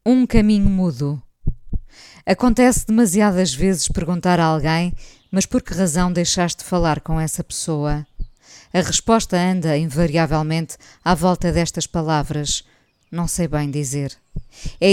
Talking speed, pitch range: 125 wpm, 150-190 Hz